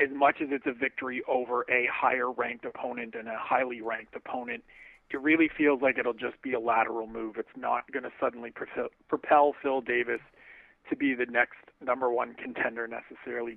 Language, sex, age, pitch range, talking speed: English, male, 40-59, 120-150 Hz, 175 wpm